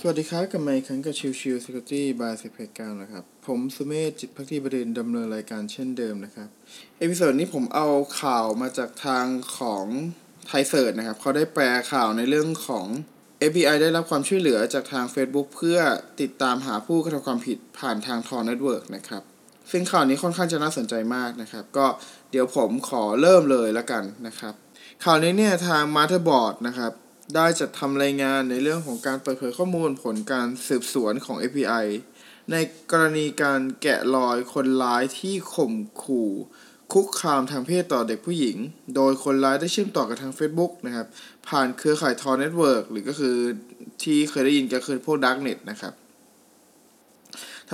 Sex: male